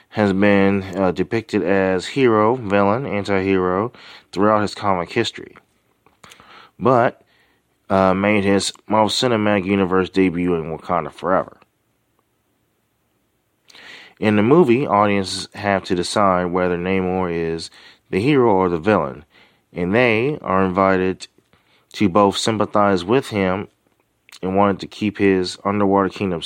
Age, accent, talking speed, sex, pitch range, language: 30-49, American, 120 wpm, male, 90-105 Hz, English